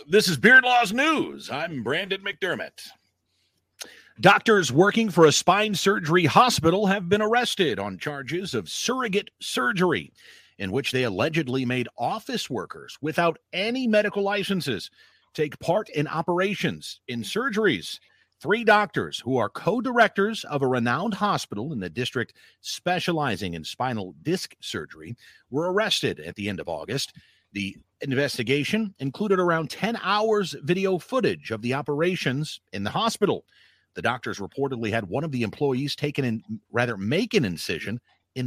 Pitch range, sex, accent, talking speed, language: 125-195 Hz, male, American, 145 wpm, English